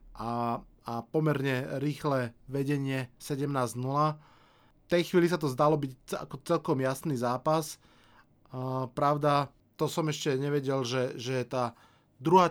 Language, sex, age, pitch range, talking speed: Slovak, male, 20-39, 130-150 Hz, 125 wpm